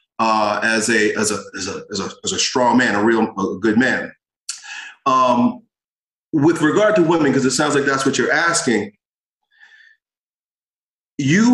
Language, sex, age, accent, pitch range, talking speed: English, male, 40-59, American, 140-215 Hz, 165 wpm